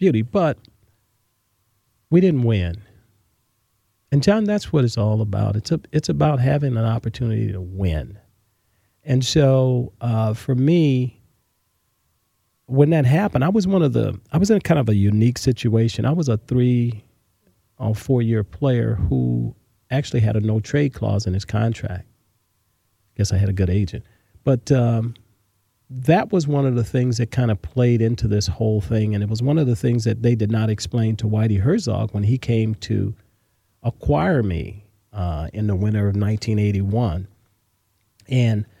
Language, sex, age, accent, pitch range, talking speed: English, male, 40-59, American, 105-130 Hz, 175 wpm